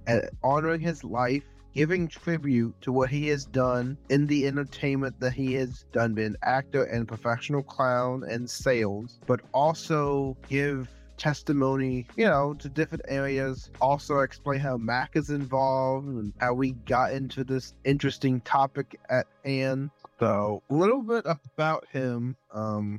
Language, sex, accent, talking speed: English, male, American, 150 wpm